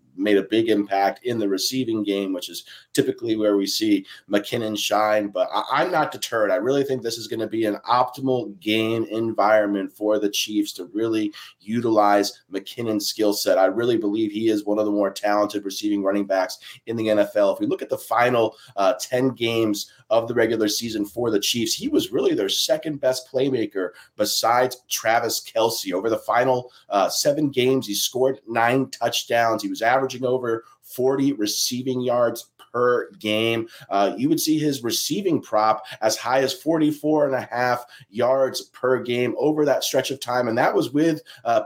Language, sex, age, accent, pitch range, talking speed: English, male, 30-49, American, 110-135 Hz, 185 wpm